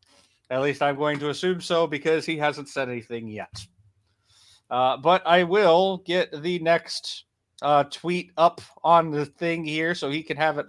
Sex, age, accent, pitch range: male, 30-49, American, 125-155 Hz